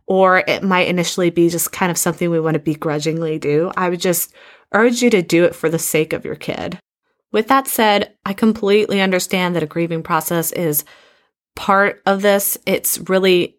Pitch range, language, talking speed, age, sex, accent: 165-210 Hz, English, 195 wpm, 20-39, female, American